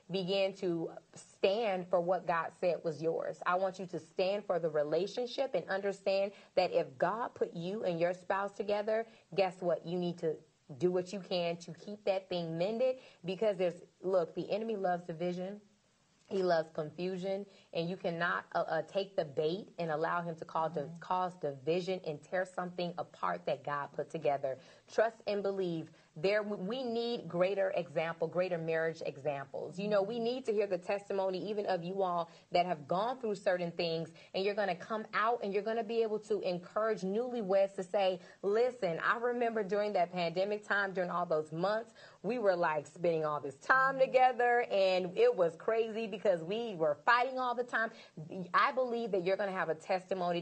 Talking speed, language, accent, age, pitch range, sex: 190 wpm, English, American, 20-39, 165-205 Hz, female